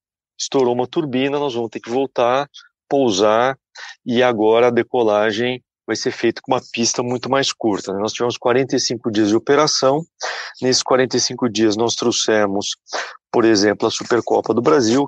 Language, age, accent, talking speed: Portuguese, 40-59, Brazilian, 160 wpm